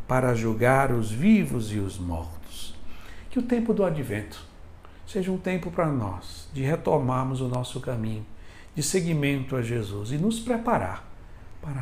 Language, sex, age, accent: Portuguese, male, 60-79, Brazilian